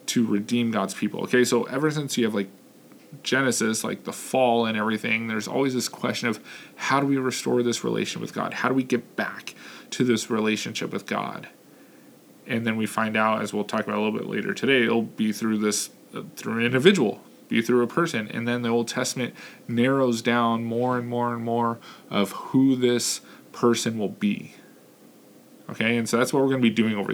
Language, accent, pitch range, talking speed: English, American, 110-125 Hz, 210 wpm